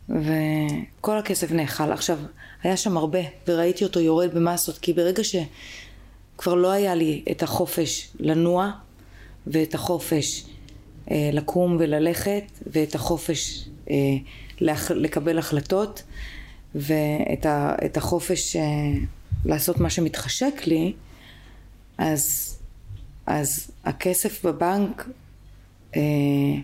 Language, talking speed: Hebrew, 100 wpm